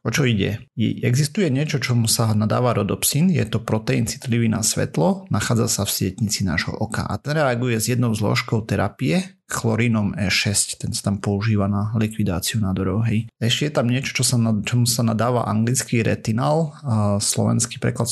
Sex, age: male, 30-49